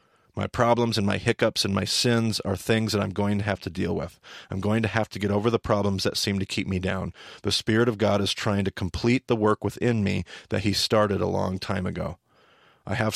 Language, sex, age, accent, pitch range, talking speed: English, male, 40-59, American, 95-110 Hz, 245 wpm